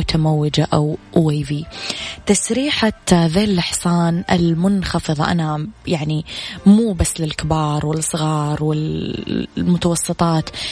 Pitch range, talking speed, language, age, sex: 155-180 Hz, 75 wpm, Arabic, 20-39, female